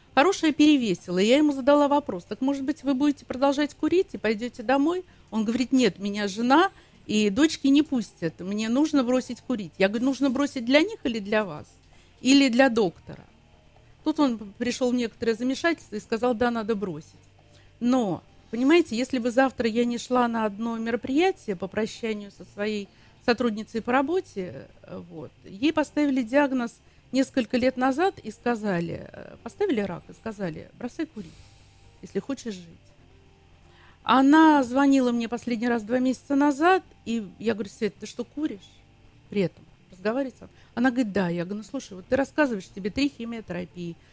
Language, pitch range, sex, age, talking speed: Russian, 200-270 Hz, female, 50-69, 160 wpm